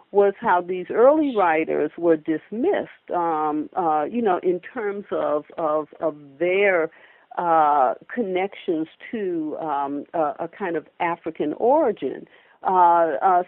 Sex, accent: female, American